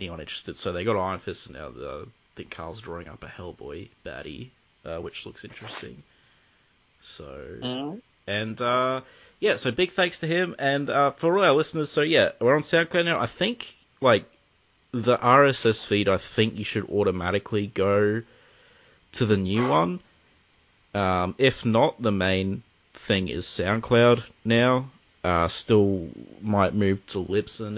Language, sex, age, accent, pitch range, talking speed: English, male, 30-49, Australian, 90-125 Hz, 160 wpm